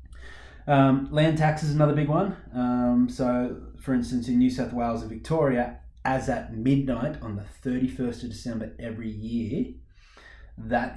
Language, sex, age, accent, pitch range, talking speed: English, male, 20-39, Australian, 105-130 Hz, 155 wpm